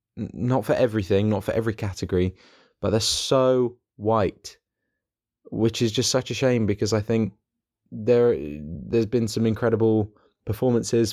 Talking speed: 145 wpm